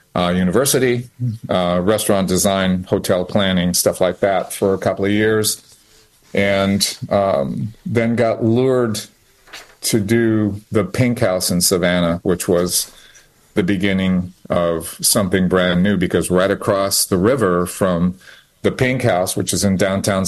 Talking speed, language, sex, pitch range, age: 140 wpm, English, male, 95-110 Hz, 40-59